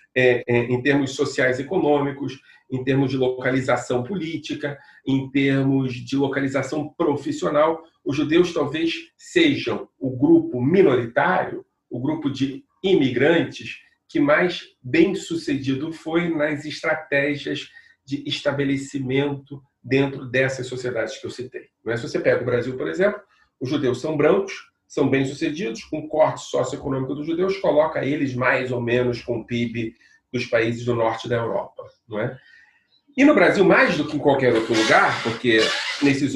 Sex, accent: male, Brazilian